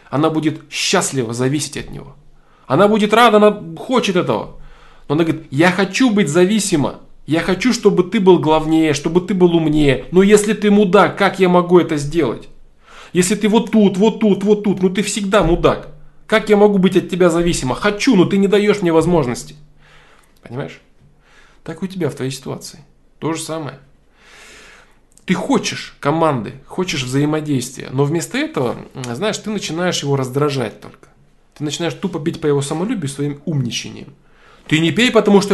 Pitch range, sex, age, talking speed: 140-190 Hz, male, 20-39, 170 wpm